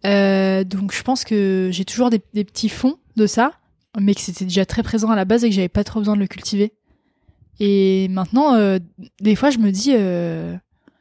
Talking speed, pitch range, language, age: 220 wpm, 195-245 Hz, French, 20-39